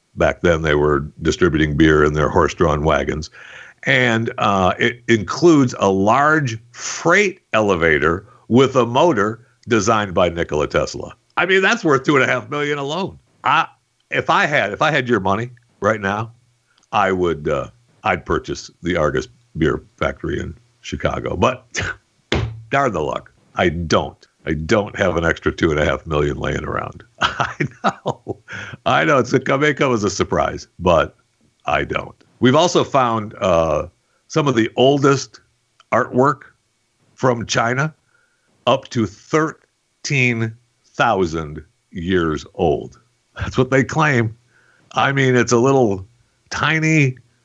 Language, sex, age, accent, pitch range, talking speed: English, male, 60-79, American, 100-135 Hz, 140 wpm